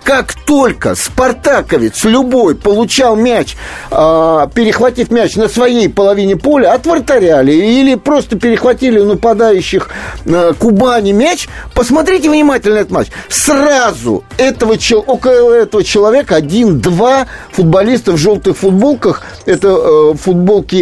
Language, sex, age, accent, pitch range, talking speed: Russian, male, 50-69, native, 205-260 Hz, 110 wpm